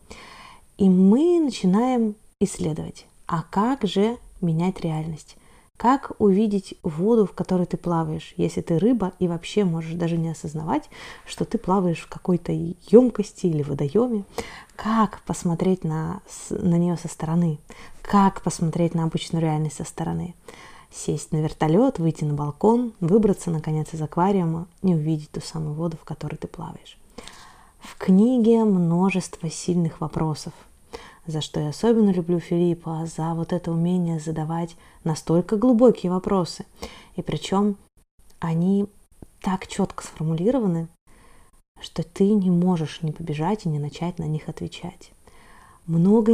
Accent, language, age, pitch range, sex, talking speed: native, Russian, 20-39, 165-200 Hz, female, 135 wpm